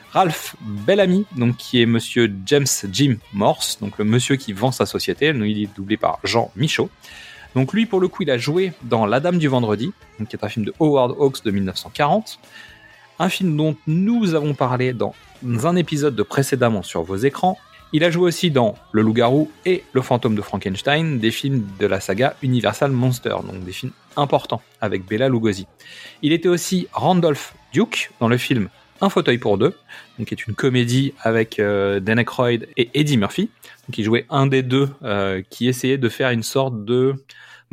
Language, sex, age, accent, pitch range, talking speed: French, male, 30-49, French, 110-155 Hz, 200 wpm